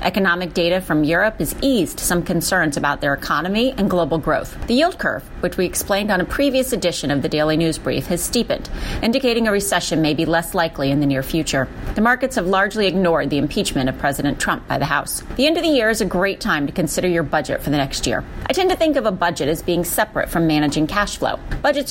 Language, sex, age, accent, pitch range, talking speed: English, female, 30-49, American, 170-230 Hz, 240 wpm